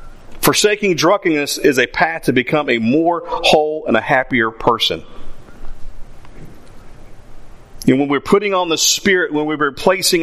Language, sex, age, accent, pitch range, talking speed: English, male, 40-59, American, 140-170 Hz, 140 wpm